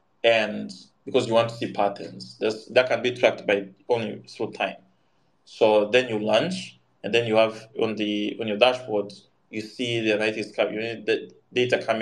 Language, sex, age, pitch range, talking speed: English, male, 20-39, 105-125 Hz, 190 wpm